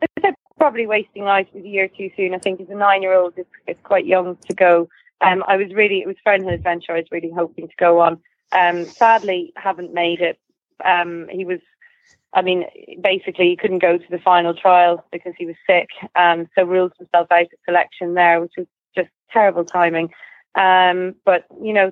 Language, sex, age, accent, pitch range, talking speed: English, female, 20-39, British, 175-200 Hz, 205 wpm